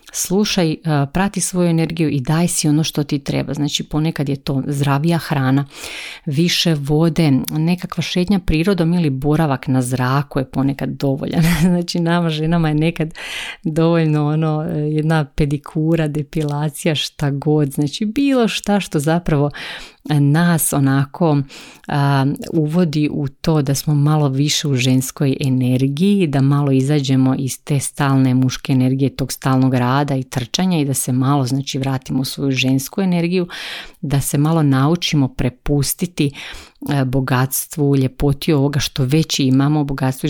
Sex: female